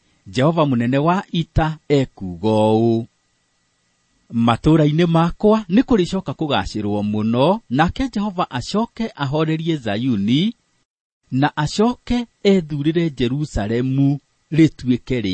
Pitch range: 110-165 Hz